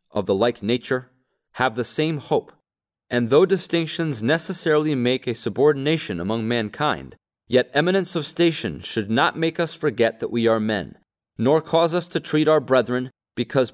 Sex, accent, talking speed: male, American, 165 wpm